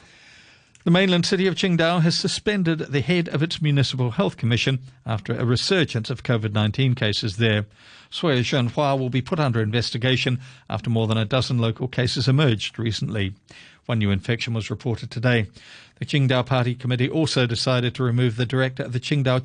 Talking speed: 175 wpm